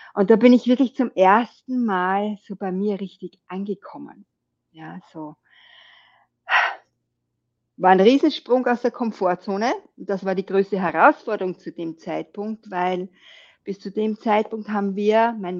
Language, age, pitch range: German, 50-69, 185-245 Hz